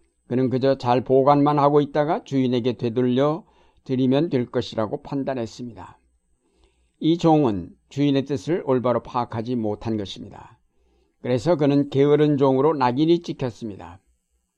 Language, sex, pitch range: Korean, male, 115-155 Hz